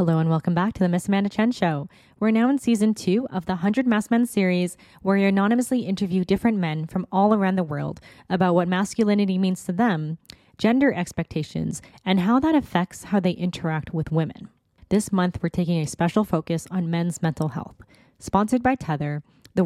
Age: 20-39